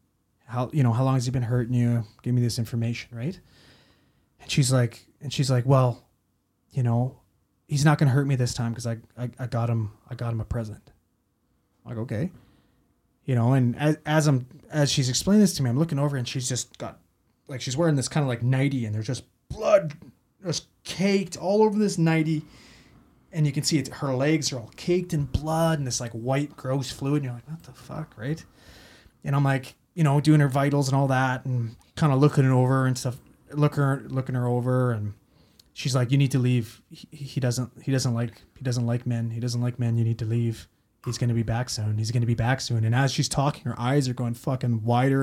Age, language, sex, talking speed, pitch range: 20-39, English, male, 240 wpm, 120-145 Hz